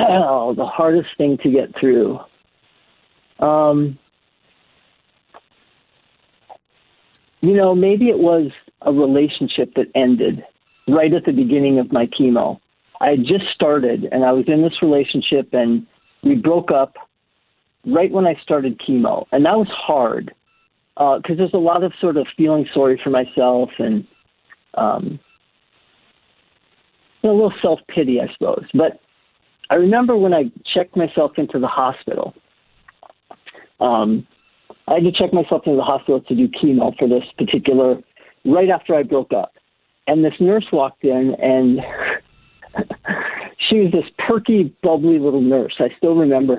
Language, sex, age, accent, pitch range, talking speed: English, male, 50-69, American, 135-185 Hz, 145 wpm